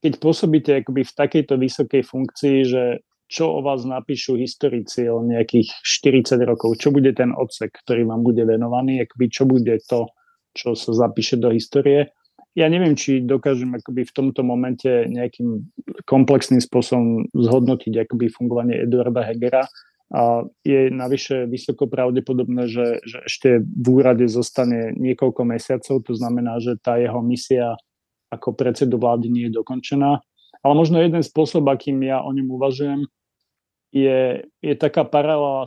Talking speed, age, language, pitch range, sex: 145 wpm, 30-49, Slovak, 120-140 Hz, male